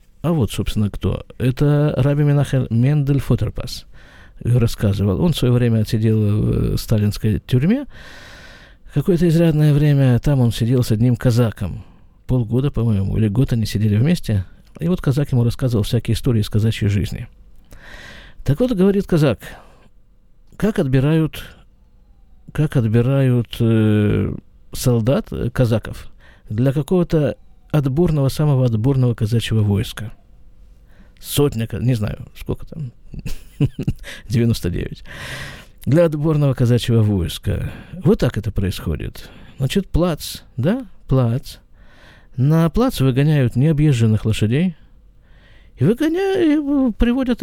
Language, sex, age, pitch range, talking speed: Russian, male, 50-69, 105-145 Hz, 115 wpm